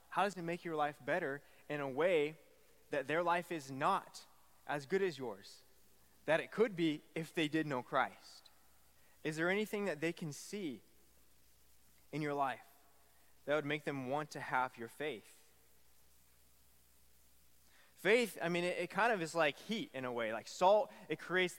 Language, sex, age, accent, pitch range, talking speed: English, male, 20-39, American, 115-170 Hz, 180 wpm